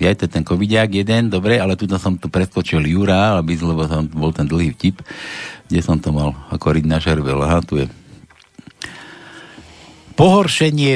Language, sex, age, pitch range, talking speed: Slovak, male, 60-79, 95-130 Hz, 170 wpm